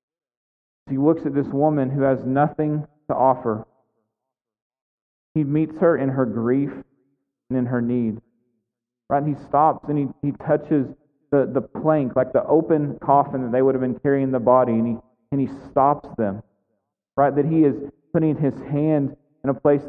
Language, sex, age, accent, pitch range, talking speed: English, male, 40-59, American, 130-155 Hz, 180 wpm